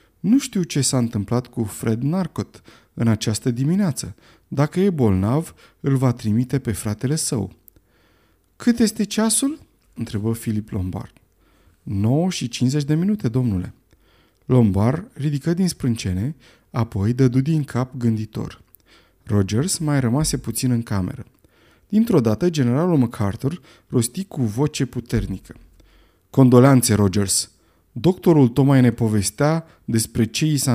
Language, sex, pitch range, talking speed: Romanian, male, 100-140 Hz, 125 wpm